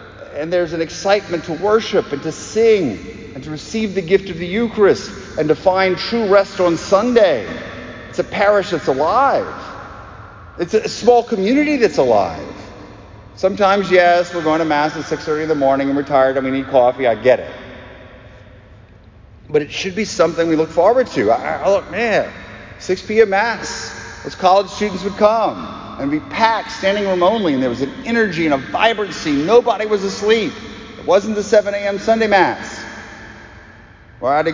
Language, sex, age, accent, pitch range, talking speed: English, male, 40-59, American, 155-225 Hz, 185 wpm